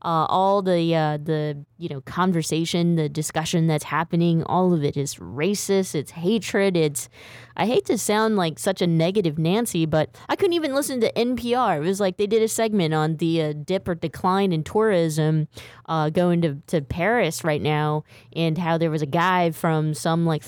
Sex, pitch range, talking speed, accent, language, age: female, 155-225 Hz, 195 wpm, American, English, 20-39